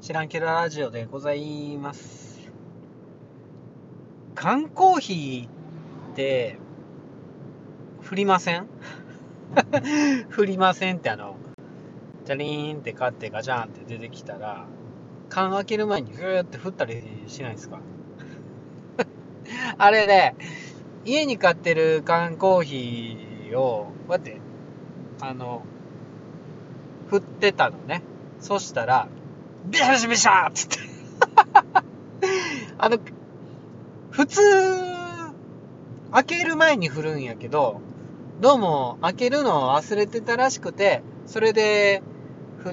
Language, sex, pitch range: Japanese, male, 140-210 Hz